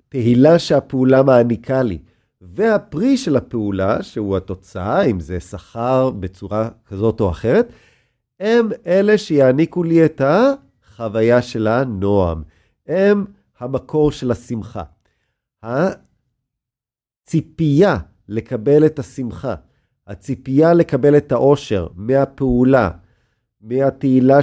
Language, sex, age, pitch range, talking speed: Hebrew, male, 40-59, 110-160 Hz, 95 wpm